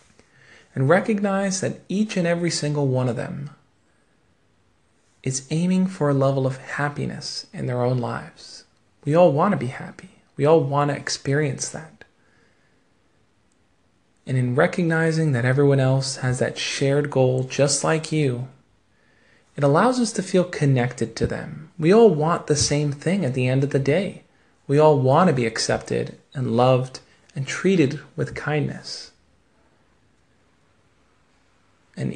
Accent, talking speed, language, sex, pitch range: American, 145 wpm, English, male, 120-155 Hz